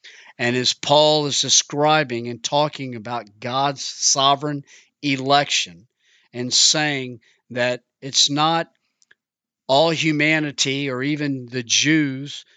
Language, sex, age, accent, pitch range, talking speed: English, male, 50-69, American, 125-150 Hz, 105 wpm